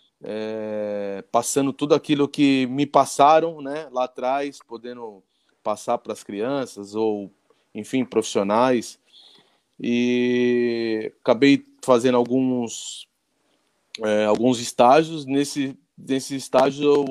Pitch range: 105-130 Hz